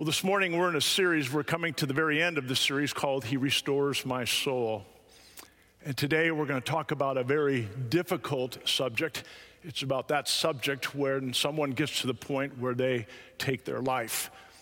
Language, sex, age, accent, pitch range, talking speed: English, male, 50-69, American, 120-160 Hz, 195 wpm